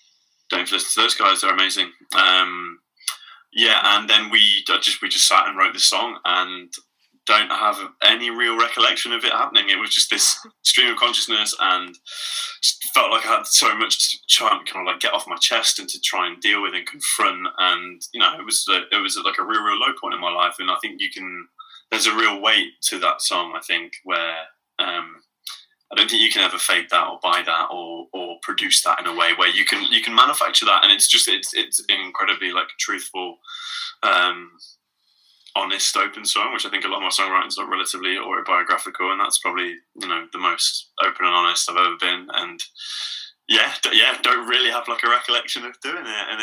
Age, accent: 20-39, British